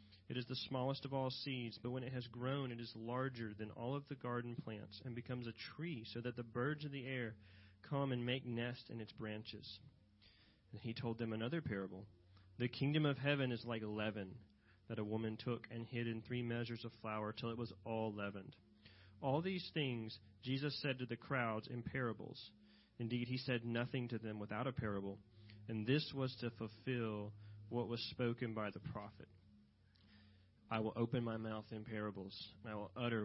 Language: English